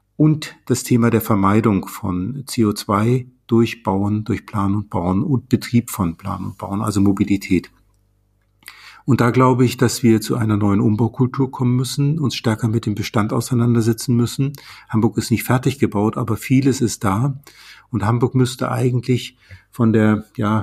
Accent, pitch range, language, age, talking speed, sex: German, 105-125 Hz, German, 50-69, 165 wpm, male